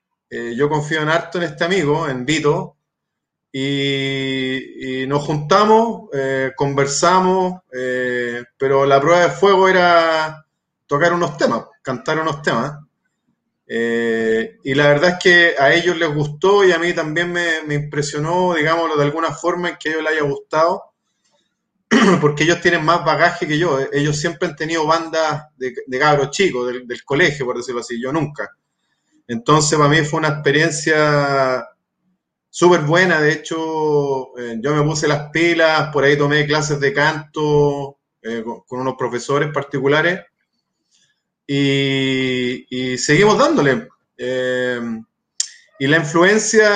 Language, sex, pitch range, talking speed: Spanish, male, 140-170 Hz, 150 wpm